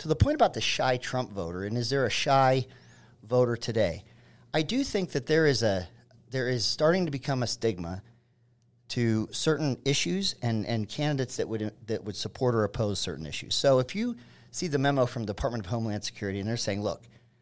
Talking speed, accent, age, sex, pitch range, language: 205 wpm, American, 40-59, male, 110-140 Hz, English